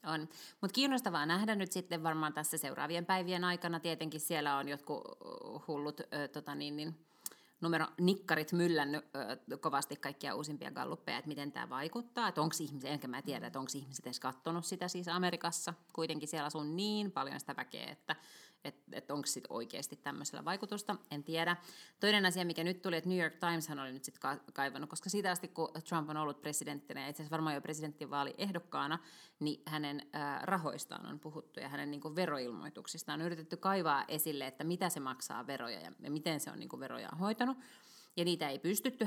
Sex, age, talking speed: female, 30-49, 185 wpm